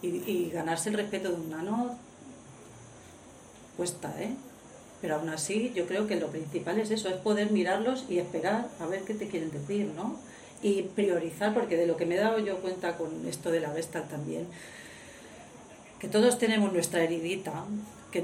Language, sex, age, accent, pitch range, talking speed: Spanish, female, 40-59, Spanish, 165-200 Hz, 180 wpm